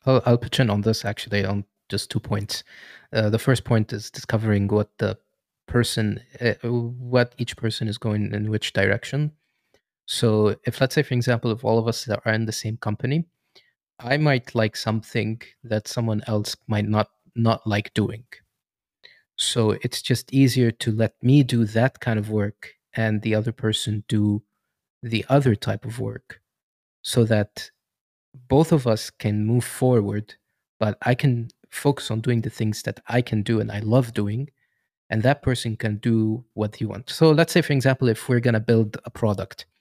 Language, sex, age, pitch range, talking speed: English, male, 20-39, 110-130 Hz, 185 wpm